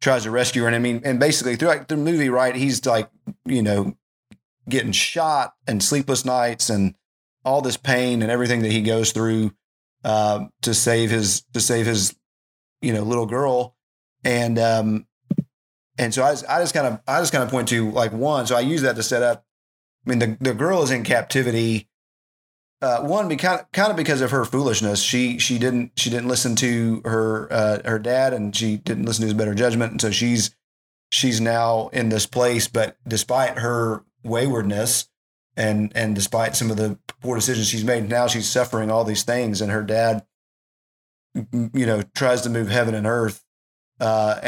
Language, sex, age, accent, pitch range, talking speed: English, male, 30-49, American, 110-125 Hz, 200 wpm